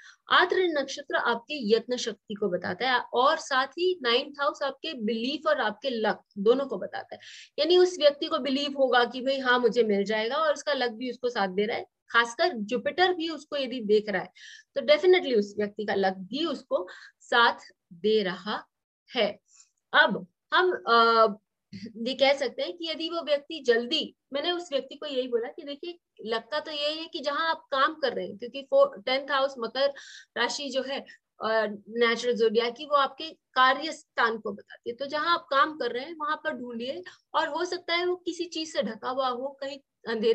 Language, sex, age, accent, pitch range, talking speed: English, female, 30-49, Indian, 235-305 Hz, 175 wpm